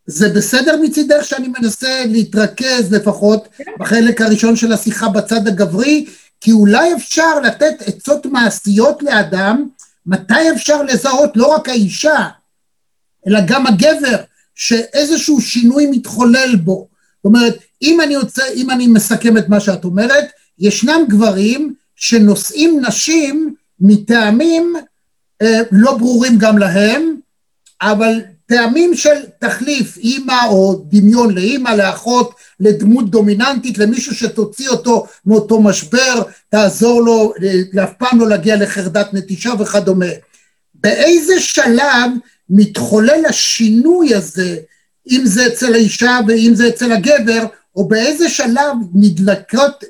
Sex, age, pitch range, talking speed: male, 50-69, 205-265 Hz, 115 wpm